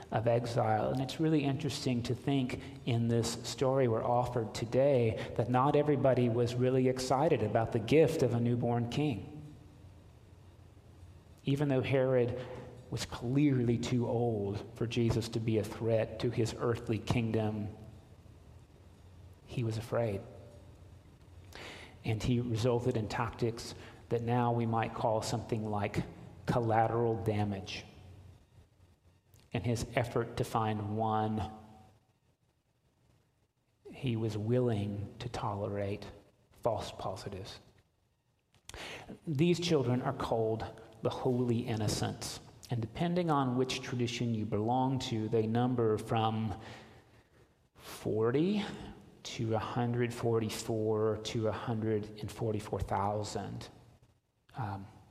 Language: English